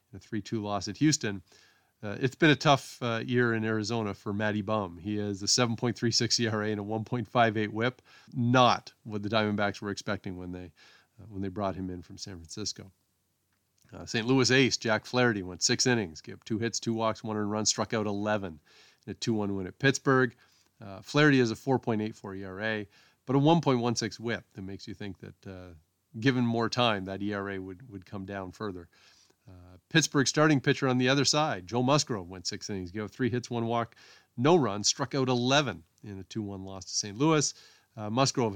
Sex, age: male, 40-59